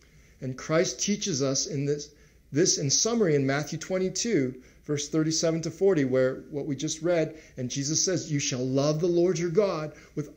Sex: male